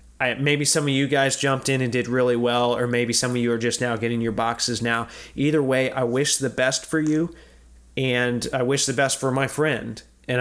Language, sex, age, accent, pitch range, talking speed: English, male, 30-49, American, 115-135 Hz, 230 wpm